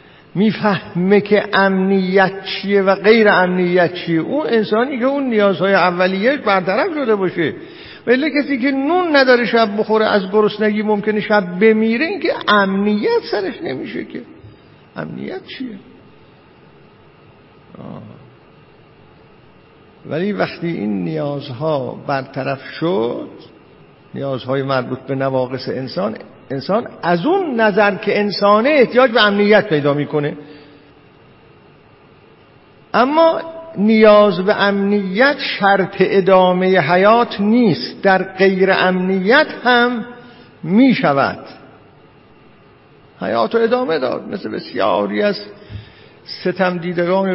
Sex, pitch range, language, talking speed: male, 155-220 Hz, Persian, 105 wpm